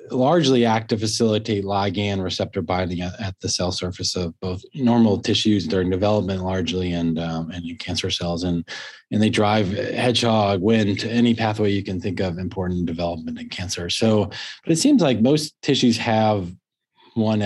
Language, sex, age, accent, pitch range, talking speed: English, male, 20-39, American, 90-110 Hz, 170 wpm